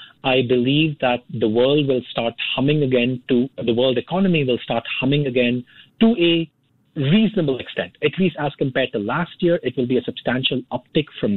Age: 40-59